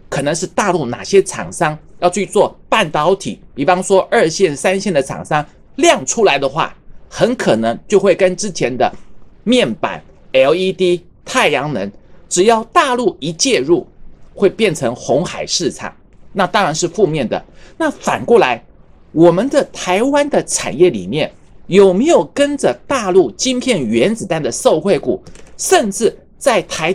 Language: Chinese